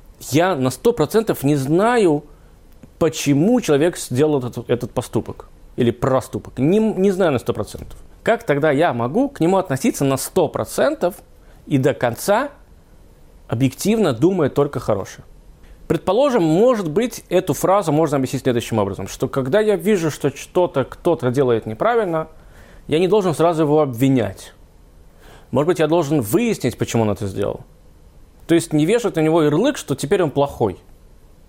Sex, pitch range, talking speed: male, 115-175 Hz, 150 wpm